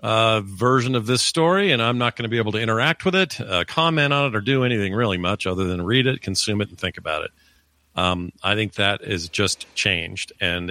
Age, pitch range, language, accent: 50-69, 90-120 Hz, English, American